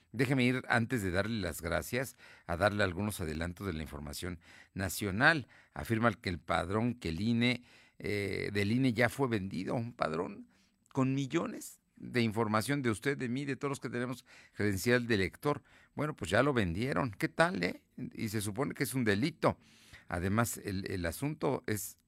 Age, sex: 50-69, male